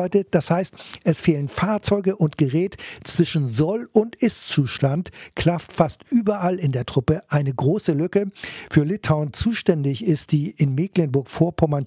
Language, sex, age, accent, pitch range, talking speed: German, male, 60-79, German, 145-180 Hz, 135 wpm